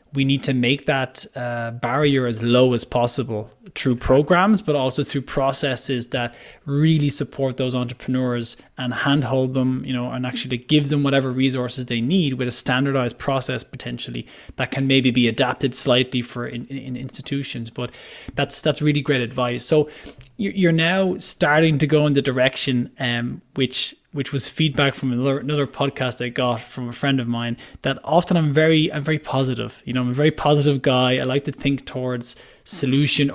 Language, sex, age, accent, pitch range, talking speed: English, male, 20-39, Irish, 125-150 Hz, 180 wpm